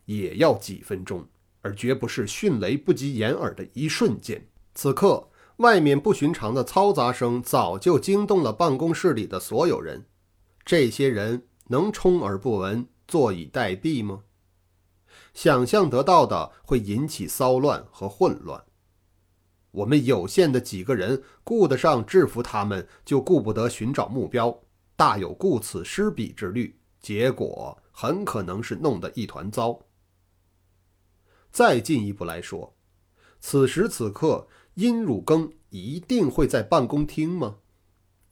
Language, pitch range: Chinese, 95-145 Hz